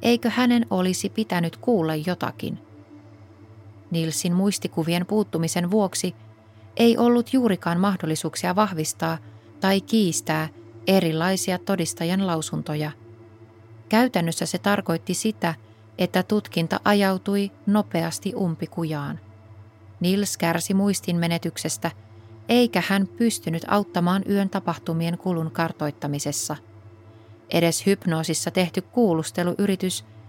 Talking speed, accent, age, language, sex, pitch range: 85 wpm, native, 30-49, Finnish, female, 145-195 Hz